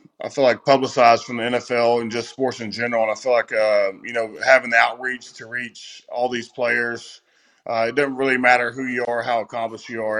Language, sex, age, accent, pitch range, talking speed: English, male, 20-39, American, 105-125 Hz, 230 wpm